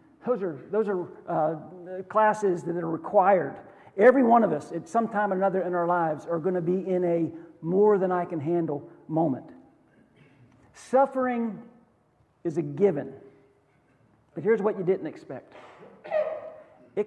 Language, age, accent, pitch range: English, 50-69, American, 160-220 Hz